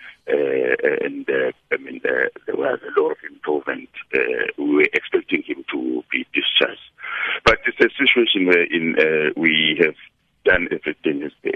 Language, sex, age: English, male, 60-79